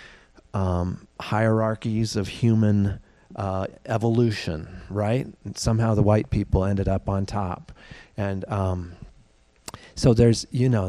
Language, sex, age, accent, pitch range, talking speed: English, male, 30-49, American, 100-120 Hz, 120 wpm